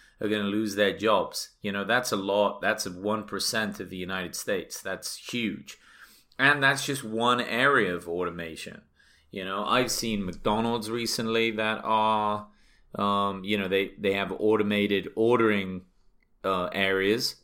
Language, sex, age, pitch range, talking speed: English, male, 30-49, 95-120 Hz, 160 wpm